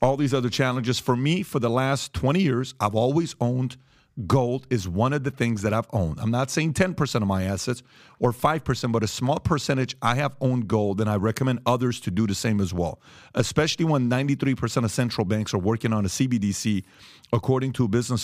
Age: 40-59